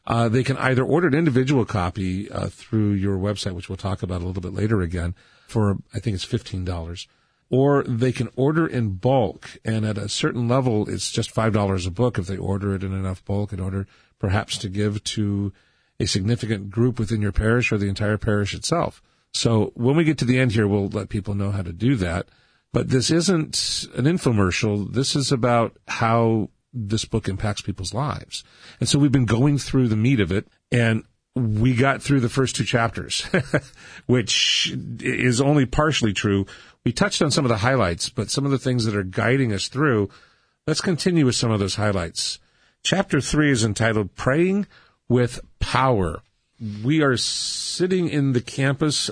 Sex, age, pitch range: male, 40-59, 100-130 Hz